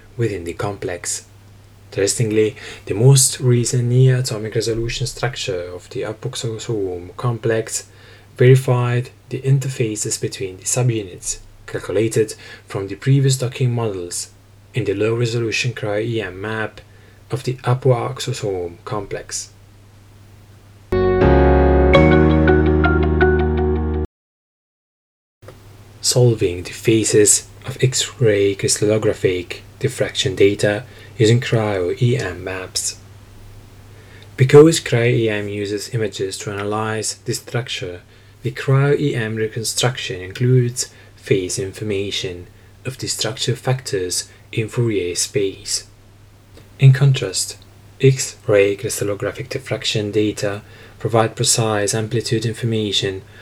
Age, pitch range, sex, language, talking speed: 10-29, 100-120 Hz, male, English, 85 wpm